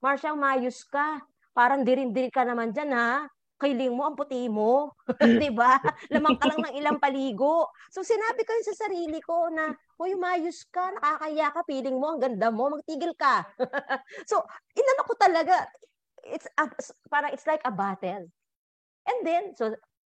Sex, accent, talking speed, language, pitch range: female, native, 165 wpm, Filipino, 200-305 Hz